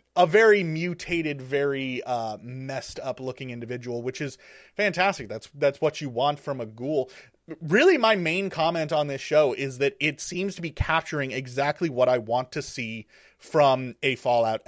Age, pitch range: 30-49, 125-175 Hz